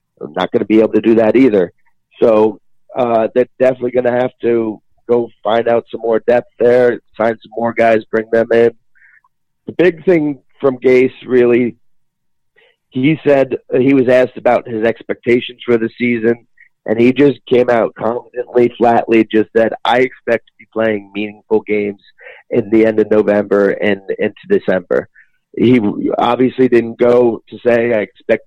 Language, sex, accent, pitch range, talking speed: English, male, American, 110-125 Hz, 170 wpm